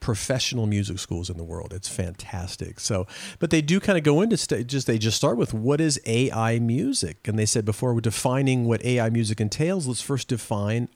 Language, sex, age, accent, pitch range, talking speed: English, male, 50-69, American, 105-135 Hz, 210 wpm